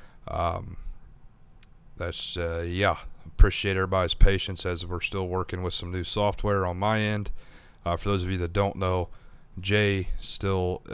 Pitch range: 85-95 Hz